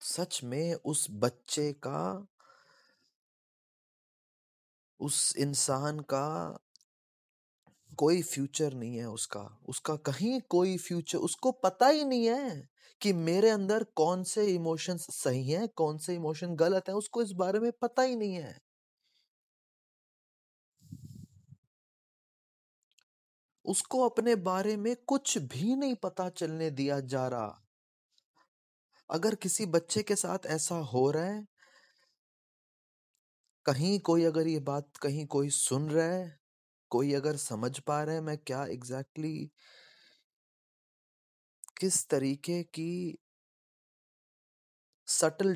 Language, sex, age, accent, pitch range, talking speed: Hindi, male, 20-39, native, 130-185 Hz, 115 wpm